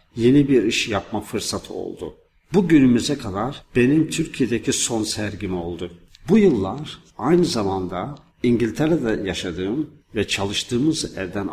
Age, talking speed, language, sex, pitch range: 50-69, 120 wpm, Turkish, male, 95-125 Hz